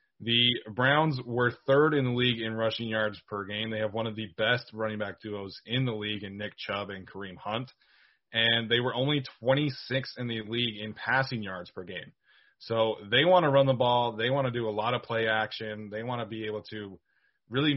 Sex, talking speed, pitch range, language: male, 225 wpm, 105-125 Hz, English